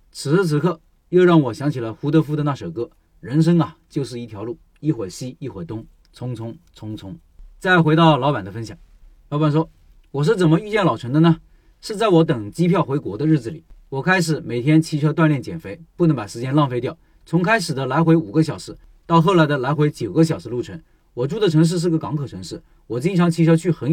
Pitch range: 135-170 Hz